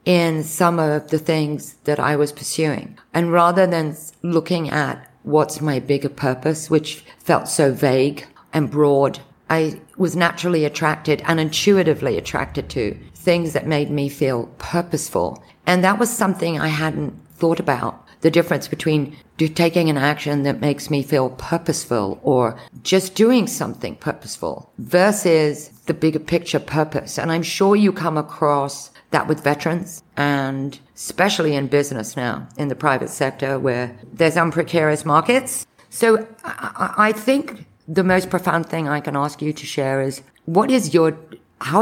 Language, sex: English, female